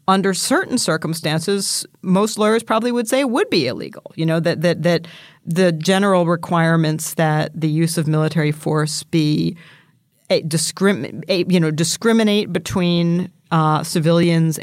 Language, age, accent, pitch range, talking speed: English, 40-59, American, 155-185 Hz, 140 wpm